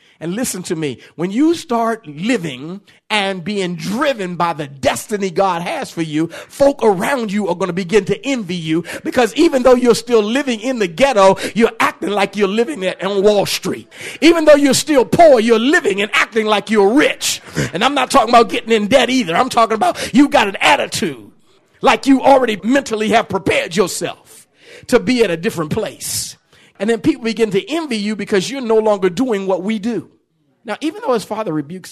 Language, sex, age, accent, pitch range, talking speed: English, male, 50-69, American, 185-265 Hz, 205 wpm